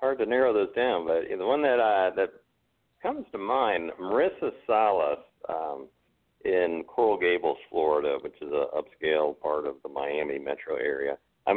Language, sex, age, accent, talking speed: English, male, 50-69, American, 165 wpm